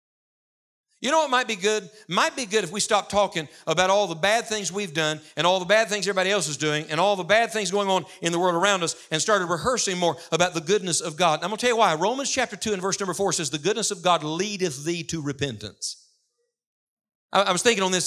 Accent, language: American, English